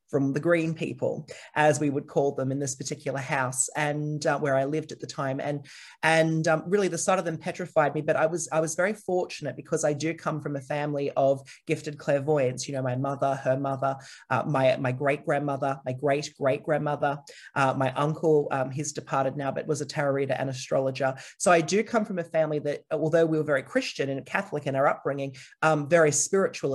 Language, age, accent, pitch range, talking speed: English, 30-49, Australian, 140-170 Hz, 220 wpm